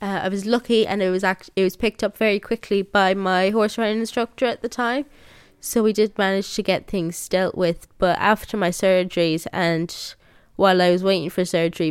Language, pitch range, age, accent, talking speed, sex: English, 170-200 Hz, 20-39, British, 210 wpm, female